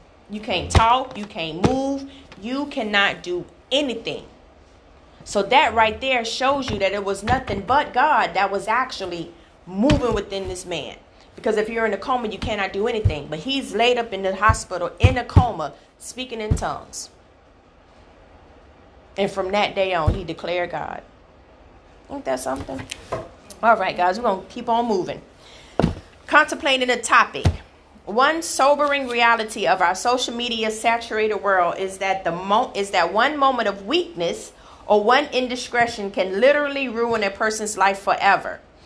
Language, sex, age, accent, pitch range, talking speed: English, female, 30-49, American, 185-245 Hz, 160 wpm